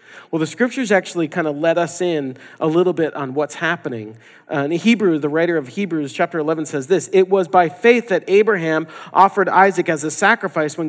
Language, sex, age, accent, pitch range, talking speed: English, male, 40-59, American, 155-205 Hz, 210 wpm